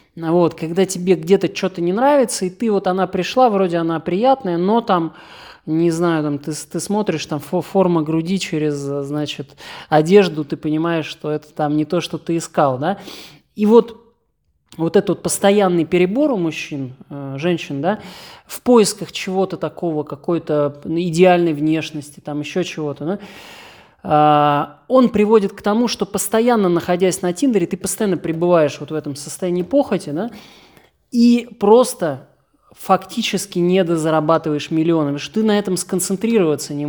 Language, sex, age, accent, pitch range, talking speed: Russian, male, 20-39, native, 155-195 Hz, 140 wpm